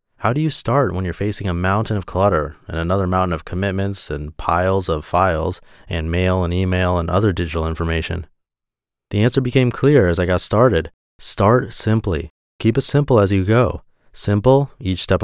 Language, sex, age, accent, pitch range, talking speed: English, male, 30-49, American, 90-115 Hz, 185 wpm